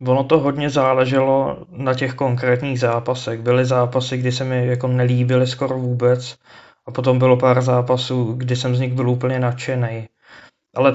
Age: 20-39